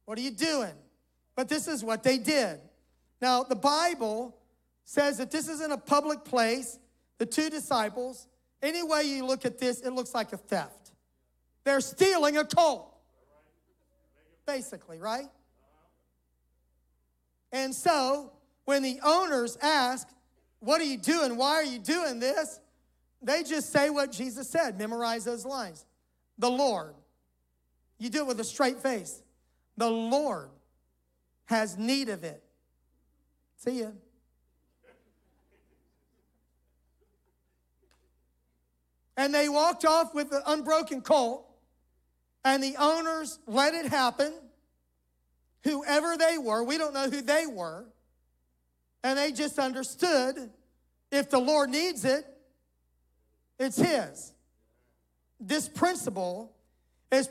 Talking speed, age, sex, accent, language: 125 wpm, 40-59, male, American, English